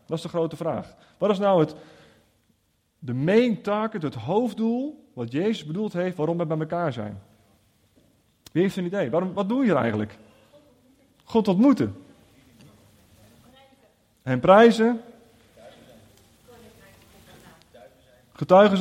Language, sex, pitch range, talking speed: Dutch, male, 115-195 Hz, 115 wpm